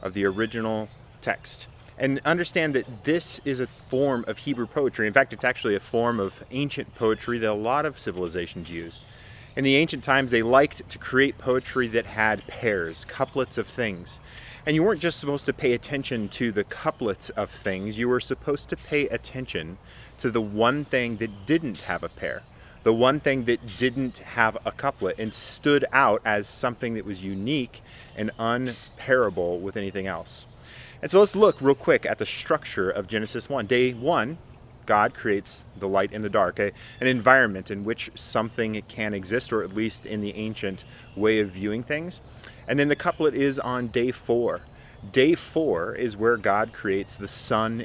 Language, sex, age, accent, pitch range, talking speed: English, male, 30-49, American, 110-130 Hz, 185 wpm